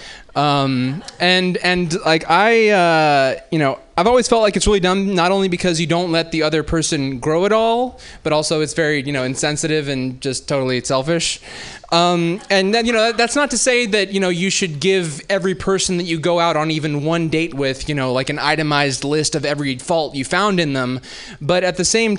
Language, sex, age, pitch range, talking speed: English, male, 20-39, 160-220 Hz, 220 wpm